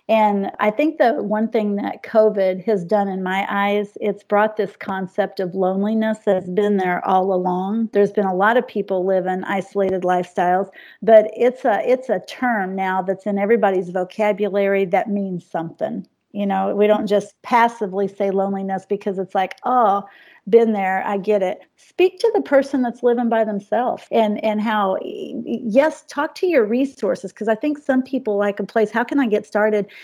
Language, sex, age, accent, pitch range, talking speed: English, female, 40-59, American, 195-230 Hz, 185 wpm